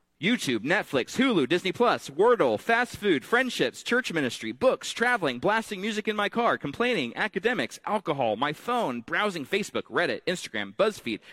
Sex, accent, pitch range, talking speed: male, American, 150-220 Hz, 145 wpm